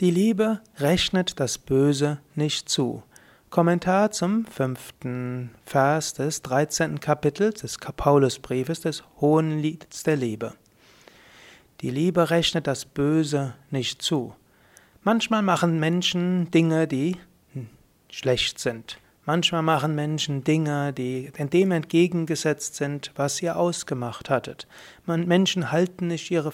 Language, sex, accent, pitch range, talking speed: German, male, German, 140-170 Hz, 115 wpm